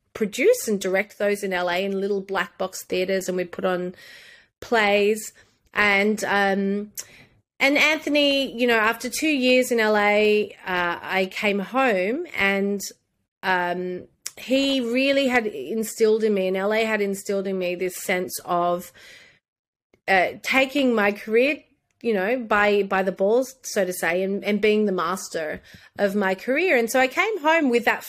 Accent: Australian